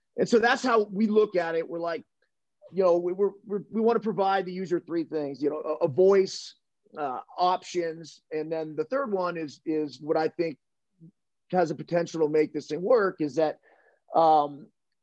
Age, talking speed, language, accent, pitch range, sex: 30-49, 200 wpm, English, American, 155-185 Hz, male